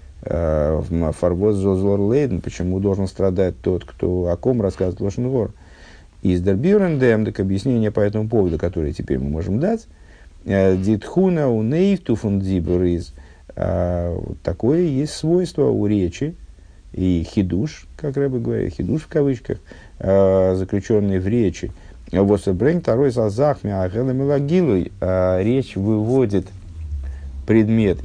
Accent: native